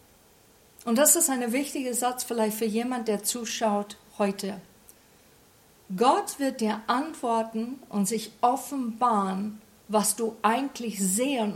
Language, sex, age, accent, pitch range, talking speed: German, female, 50-69, German, 210-255 Hz, 120 wpm